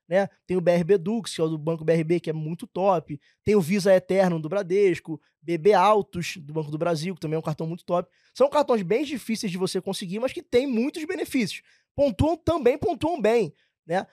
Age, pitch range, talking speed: 20-39, 175-235 Hz, 215 wpm